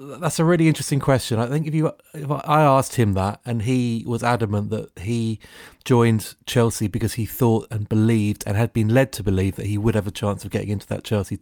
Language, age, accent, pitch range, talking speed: English, 30-49, British, 105-125 Hz, 230 wpm